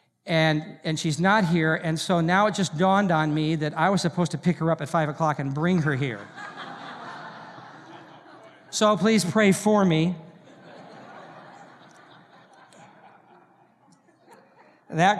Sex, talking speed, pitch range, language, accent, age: male, 135 wpm, 160-210 Hz, English, American, 50-69